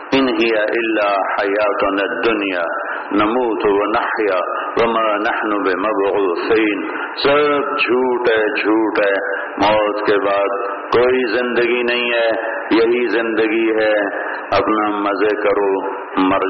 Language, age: English, 50-69